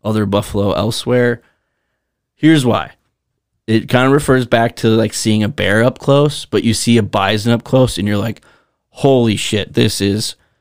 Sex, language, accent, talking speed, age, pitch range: male, English, American, 175 wpm, 30-49, 110-125 Hz